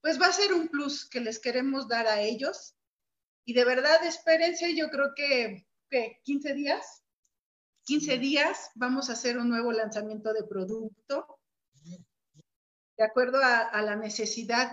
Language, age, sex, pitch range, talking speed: Spanish, 40-59, female, 225-280 Hz, 150 wpm